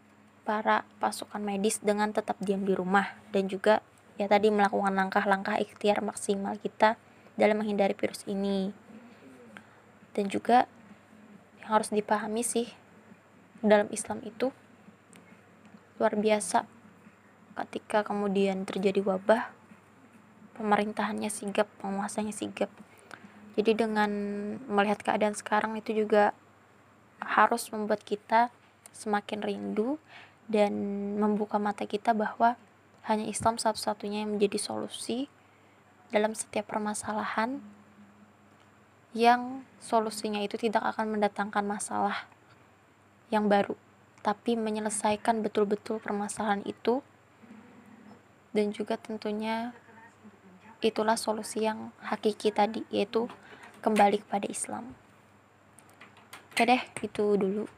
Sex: female